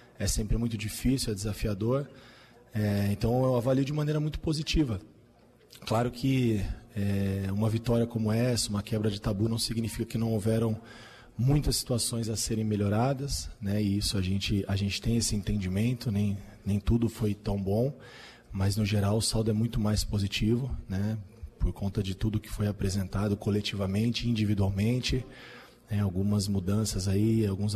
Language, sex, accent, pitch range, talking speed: Portuguese, male, Brazilian, 100-115 Hz, 160 wpm